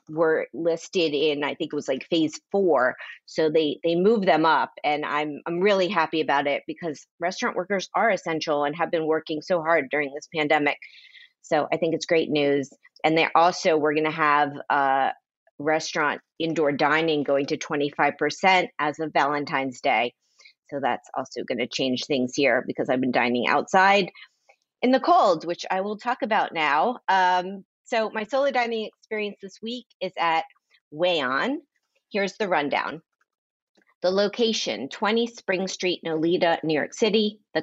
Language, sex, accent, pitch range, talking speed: English, female, American, 150-200 Hz, 165 wpm